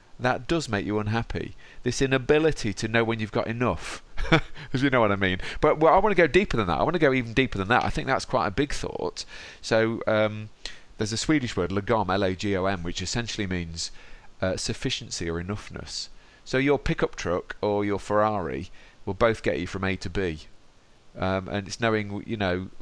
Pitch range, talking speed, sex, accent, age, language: 100-130 Hz, 205 wpm, male, British, 40-59, English